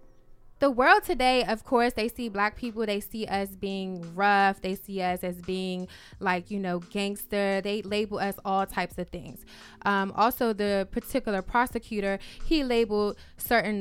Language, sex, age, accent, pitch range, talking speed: English, female, 20-39, American, 195-235 Hz, 165 wpm